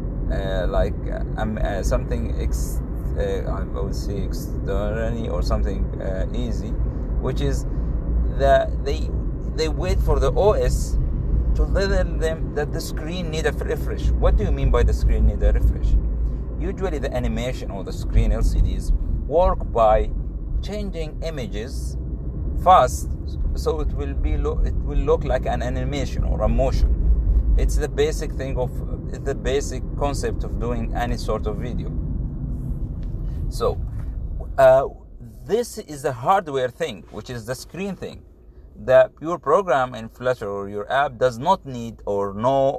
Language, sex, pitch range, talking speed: English, male, 70-120 Hz, 155 wpm